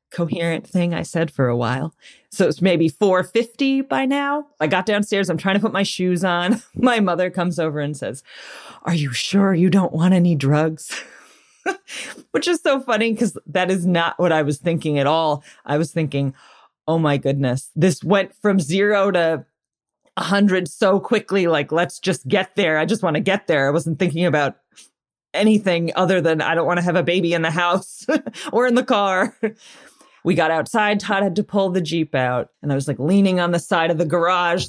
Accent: American